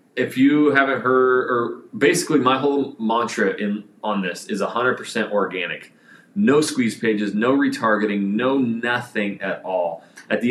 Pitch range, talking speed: 105-135 Hz, 150 wpm